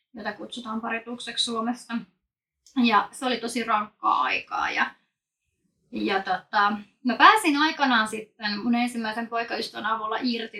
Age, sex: 20-39, female